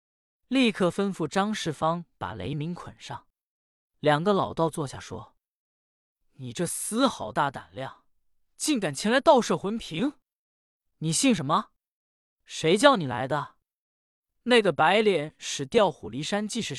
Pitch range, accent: 130-210 Hz, native